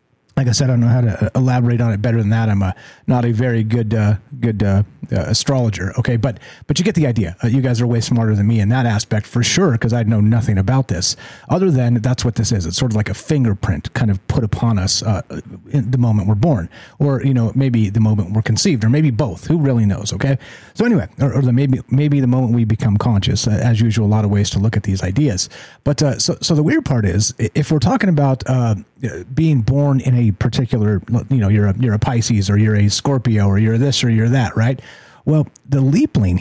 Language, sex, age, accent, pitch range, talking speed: English, male, 30-49, American, 110-135 Hz, 250 wpm